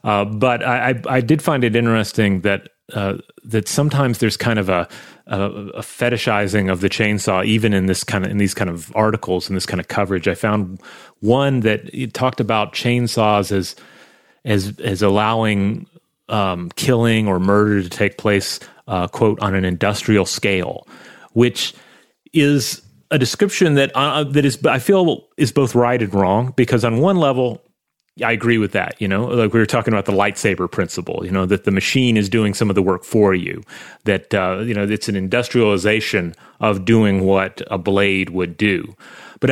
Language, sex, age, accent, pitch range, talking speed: English, male, 30-49, American, 95-120 Hz, 190 wpm